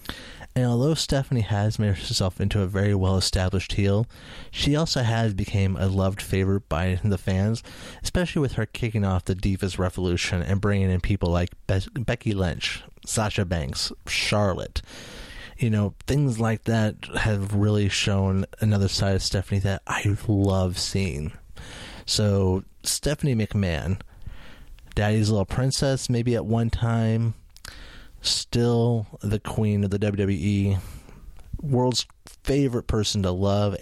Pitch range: 90-110 Hz